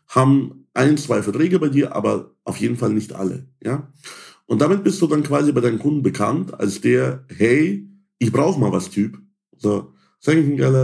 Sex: male